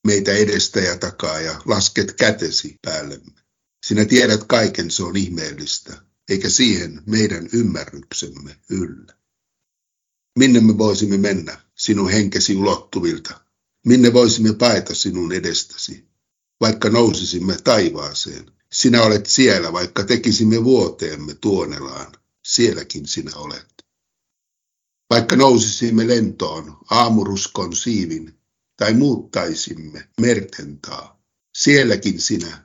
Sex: male